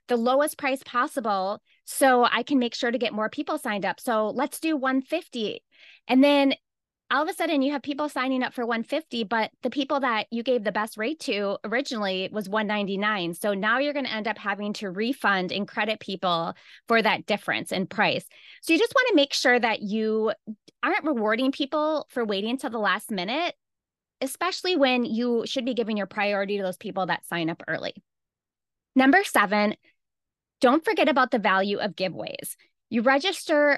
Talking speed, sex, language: 195 wpm, female, English